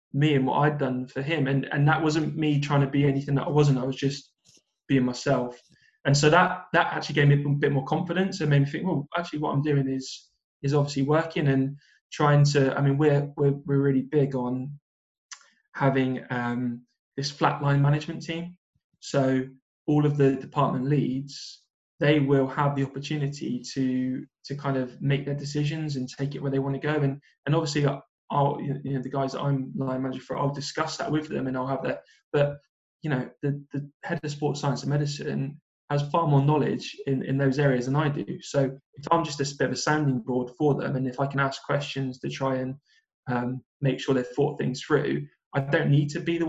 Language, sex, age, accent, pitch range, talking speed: English, male, 20-39, British, 135-150 Hz, 215 wpm